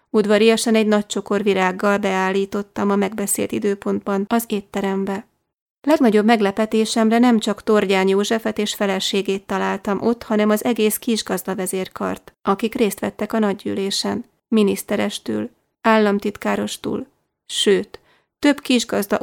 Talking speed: 110 wpm